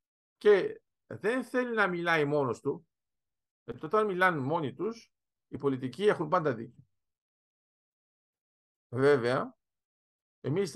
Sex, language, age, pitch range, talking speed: male, Greek, 50-69, 130-170 Hz, 105 wpm